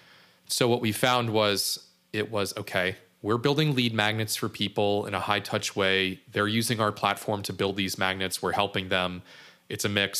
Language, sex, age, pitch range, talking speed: English, male, 30-49, 100-130 Hz, 195 wpm